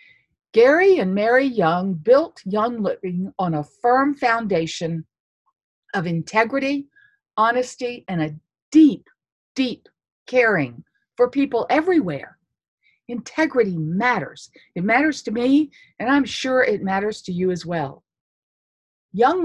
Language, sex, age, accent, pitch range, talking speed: English, female, 50-69, American, 195-290 Hz, 115 wpm